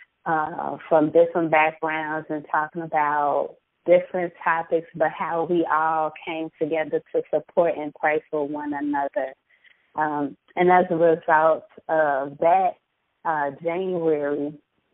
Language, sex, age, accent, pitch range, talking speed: English, female, 20-39, American, 155-175 Hz, 125 wpm